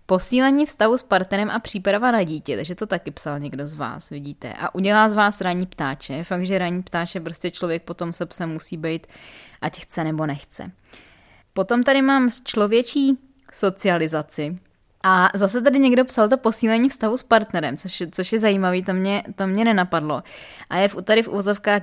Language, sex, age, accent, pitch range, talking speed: Czech, female, 20-39, native, 170-205 Hz, 190 wpm